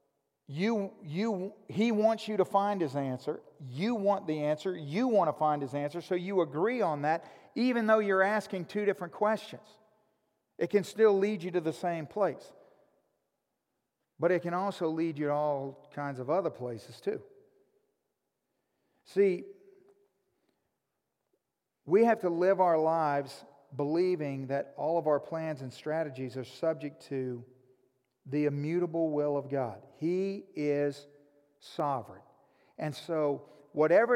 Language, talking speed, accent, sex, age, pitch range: English, 145 wpm, American, male, 40-59, 150-215 Hz